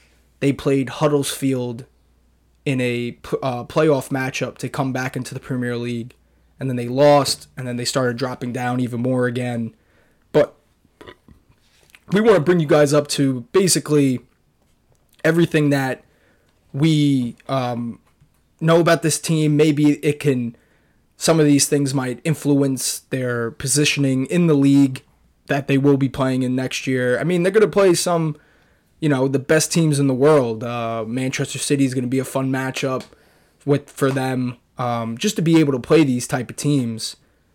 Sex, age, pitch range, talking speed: male, 20-39, 120-145 Hz, 170 wpm